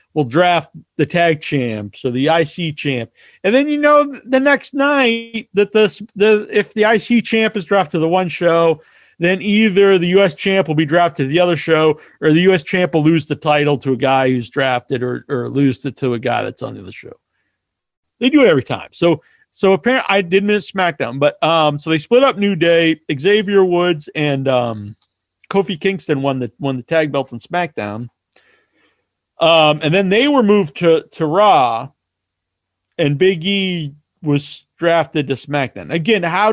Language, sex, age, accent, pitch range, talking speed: English, male, 40-59, American, 150-215 Hz, 200 wpm